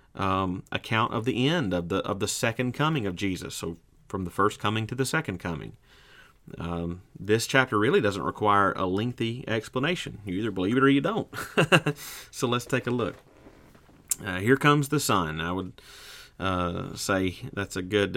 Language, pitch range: English, 90-120 Hz